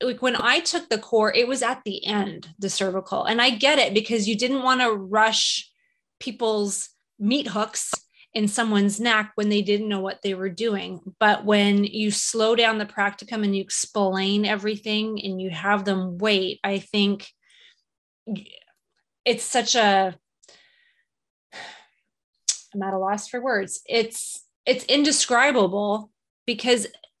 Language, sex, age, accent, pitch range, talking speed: English, female, 20-39, American, 205-250 Hz, 150 wpm